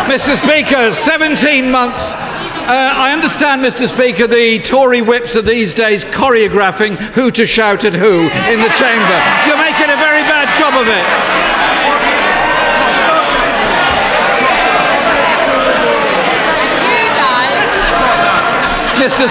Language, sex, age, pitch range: English, male, 50-69, 235-290 Hz